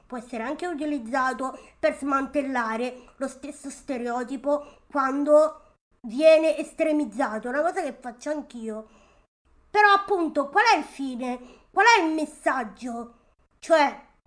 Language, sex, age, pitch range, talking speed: Italian, female, 20-39, 255-320 Hz, 120 wpm